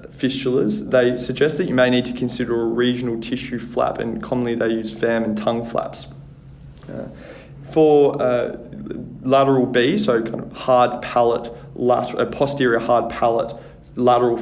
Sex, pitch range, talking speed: male, 115-130 Hz, 145 wpm